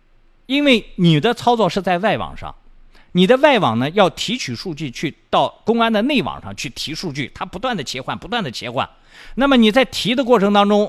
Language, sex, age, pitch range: Chinese, male, 50-69, 150-250 Hz